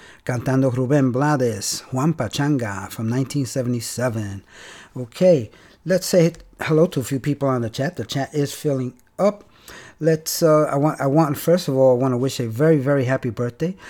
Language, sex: Spanish, male